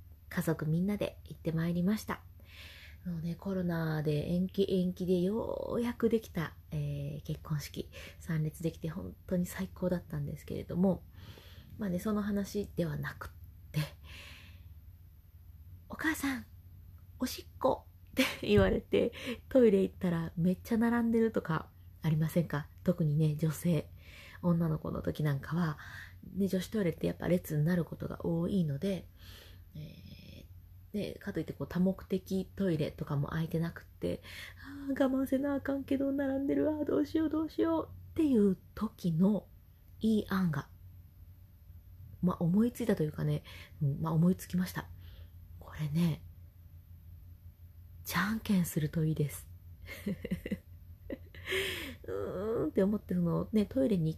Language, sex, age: Japanese, female, 20-39